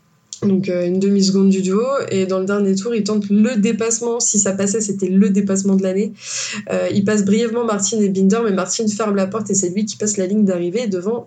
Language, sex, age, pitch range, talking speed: French, female, 20-39, 190-220 Hz, 235 wpm